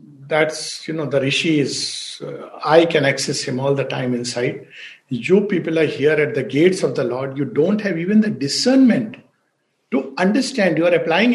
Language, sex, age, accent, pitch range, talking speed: English, male, 60-79, Indian, 165-220 Hz, 190 wpm